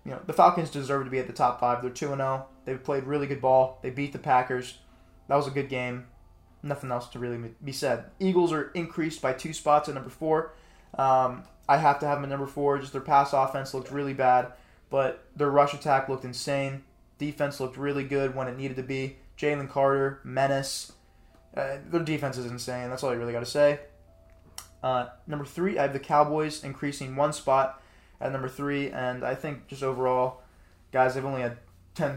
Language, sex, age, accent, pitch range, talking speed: English, male, 20-39, American, 125-140 Hz, 210 wpm